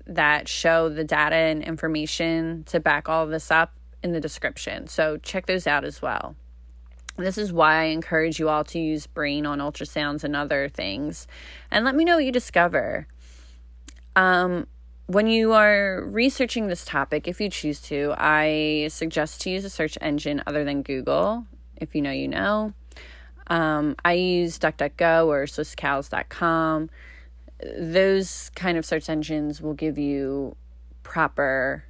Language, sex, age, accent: English, female, 20-39, American